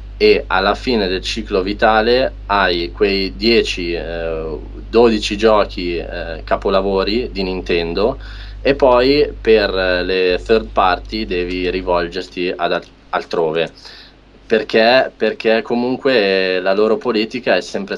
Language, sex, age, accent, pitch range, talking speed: English, male, 20-39, Italian, 95-110 Hz, 115 wpm